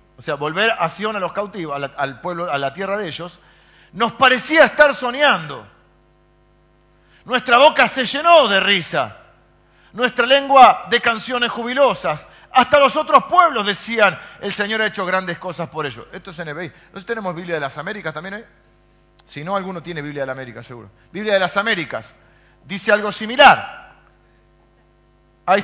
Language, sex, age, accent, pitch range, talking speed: Spanish, male, 50-69, Argentinian, 155-215 Hz, 175 wpm